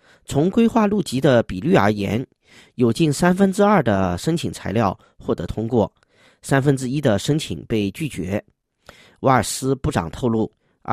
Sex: male